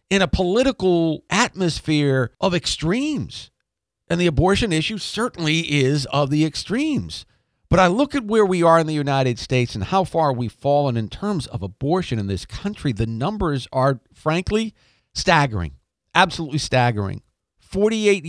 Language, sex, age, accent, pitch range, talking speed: English, male, 50-69, American, 110-165 Hz, 150 wpm